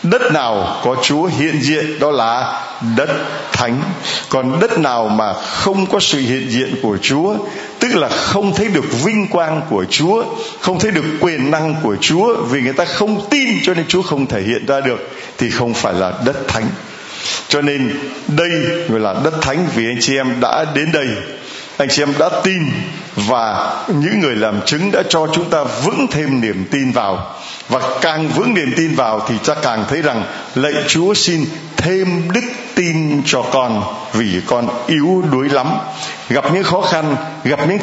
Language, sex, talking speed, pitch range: Vietnamese, male, 185 wpm, 130-170 Hz